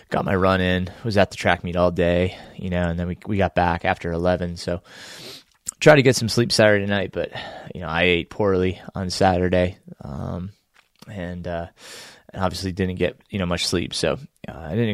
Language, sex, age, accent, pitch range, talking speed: English, male, 20-39, American, 90-110 Hz, 210 wpm